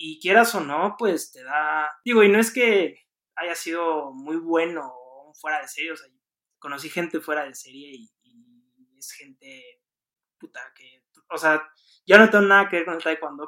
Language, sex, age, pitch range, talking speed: Spanish, male, 20-39, 145-205 Hz, 190 wpm